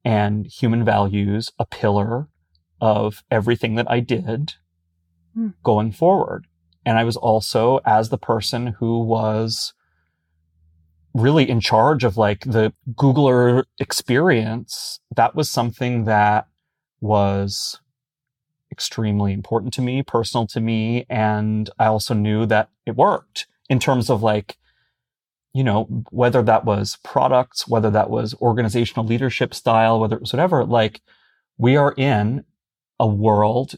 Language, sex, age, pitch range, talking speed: English, male, 30-49, 105-130 Hz, 130 wpm